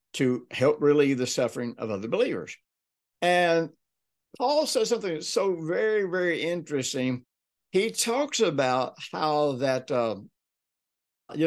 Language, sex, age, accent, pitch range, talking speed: English, male, 60-79, American, 130-180 Hz, 125 wpm